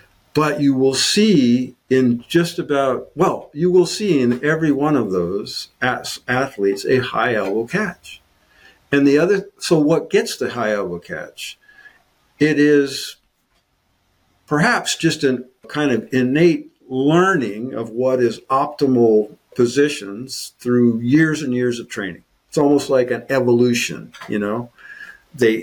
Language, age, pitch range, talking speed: English, 50-69, 120-155 Hz, 140 wpm